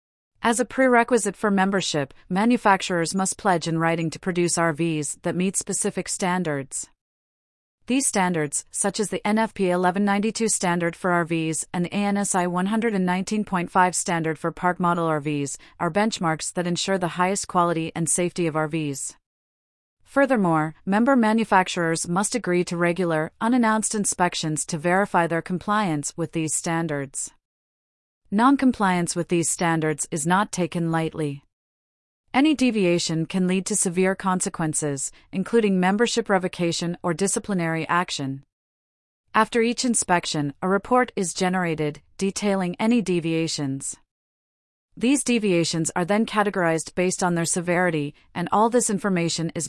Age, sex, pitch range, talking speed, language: 30-49, female, 165-200 Hz, 130 wpm, English